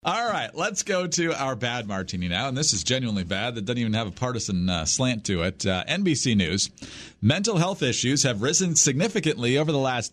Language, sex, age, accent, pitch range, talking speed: English, male, 40-59, American, 110-155 Hz, 215 wpm